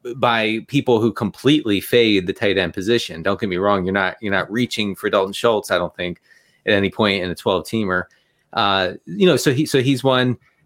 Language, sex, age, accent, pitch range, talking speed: English, male, 30-49, American, 110-135 Hz, 220 wpm